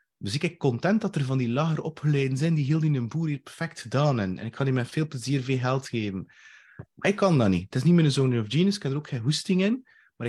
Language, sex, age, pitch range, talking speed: Dutch, male, 30-49, 115-155 Hz, 285 wpm